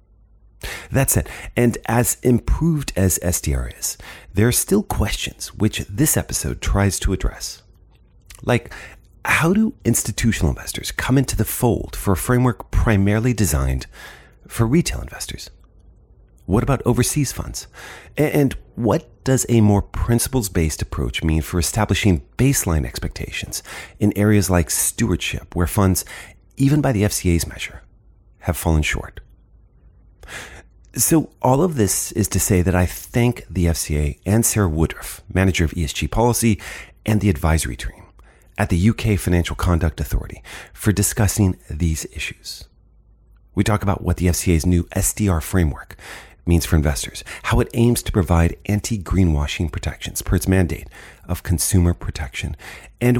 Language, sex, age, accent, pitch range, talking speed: English, male, 40-59, American, 85-110 Hz, 140 wpm